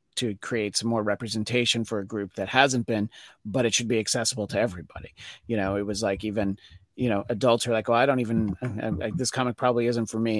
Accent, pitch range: American, 105-135 Hz